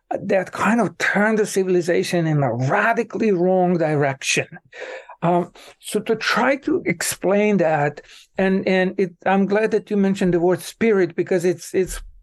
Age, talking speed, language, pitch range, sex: 60-79, 150 wpm, English, 170-200 Hz, male